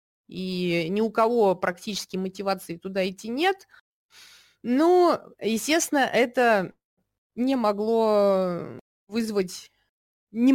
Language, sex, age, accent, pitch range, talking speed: Russian, female, 20-39, native, 185-245 Hz, 90 wpm